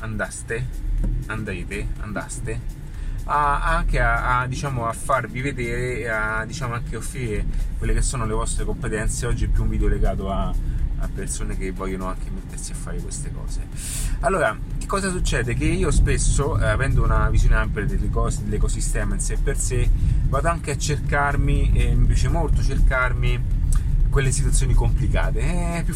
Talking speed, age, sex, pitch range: 165 wpm, 30-49, male, 110-135 Hz